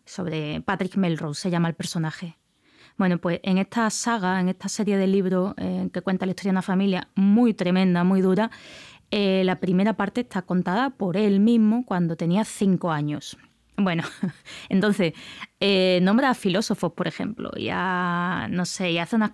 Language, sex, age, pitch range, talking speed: Spanish, female, 20-39, 180-210 Hz, 165 wpm